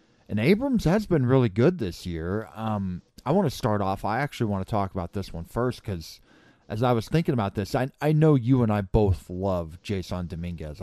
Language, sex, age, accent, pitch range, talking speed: English, male, 30-49, American, 90-115 Hz, 220 wpm